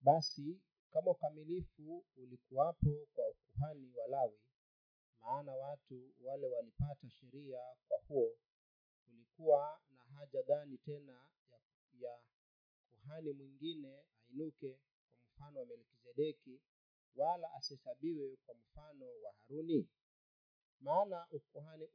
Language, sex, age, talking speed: Swahili, male, 40-59, 100 wpm